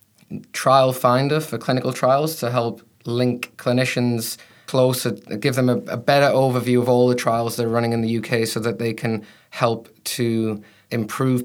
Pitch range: 110-125 Hz